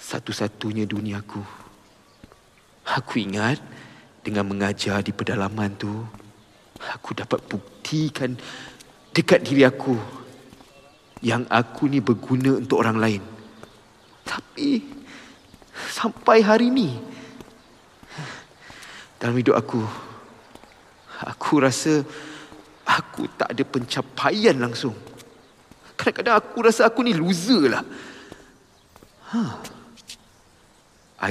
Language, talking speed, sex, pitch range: Malay, 90 wpm, male, 105-150 Hz